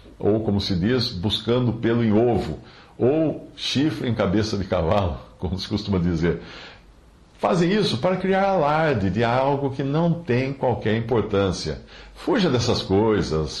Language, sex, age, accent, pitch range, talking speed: English, male, 60-79, Brazilian, 95-130 Hz, 145 wpm